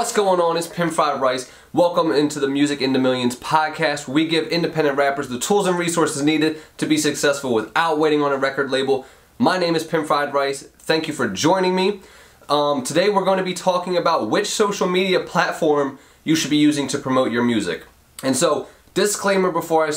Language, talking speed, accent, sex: English, 205 wpm, American, male